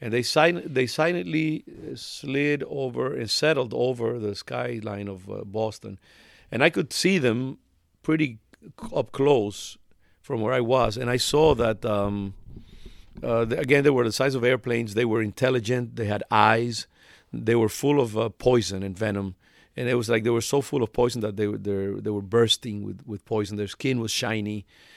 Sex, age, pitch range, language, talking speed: male, 50-69, 100-120 Hz, English, 180 wpm